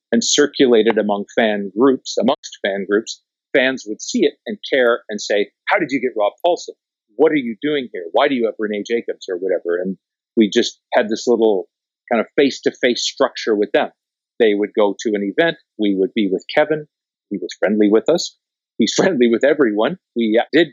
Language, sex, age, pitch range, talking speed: English, male, 50-69, 100-120 Hz, 200 wpm